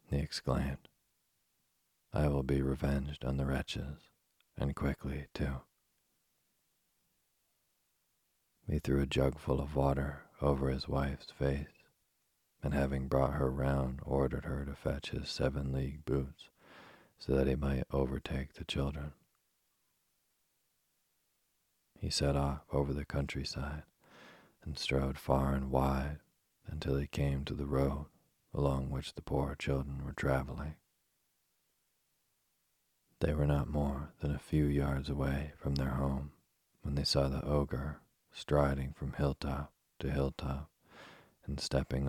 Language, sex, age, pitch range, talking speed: English, male, 40-59, 65-70 Hz, 130 wpm